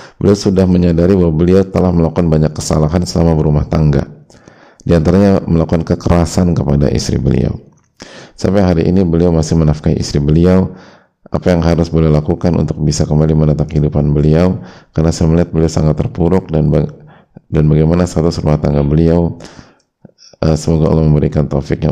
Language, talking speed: Indonesian, 155 wpm